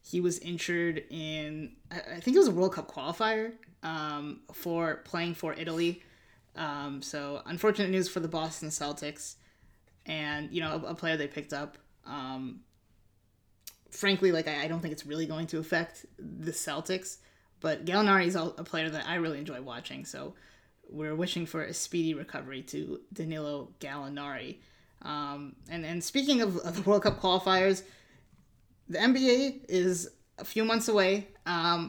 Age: 20-39